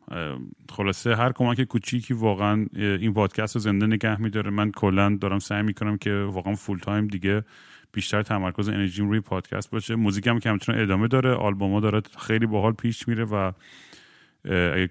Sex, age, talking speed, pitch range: male, 30-49, 155 wpm, 100-115 Hz